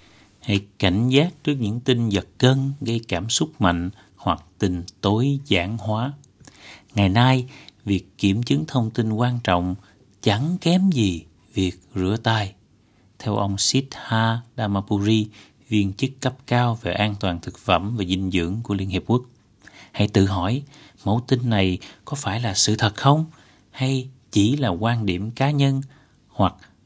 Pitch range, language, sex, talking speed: 95-125 Hz, Vietnamese, male, 160 wpm